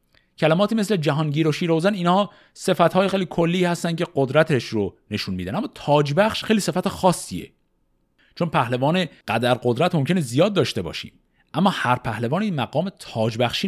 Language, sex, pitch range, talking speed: Persian, male, 105-170 Hz, 145 wpm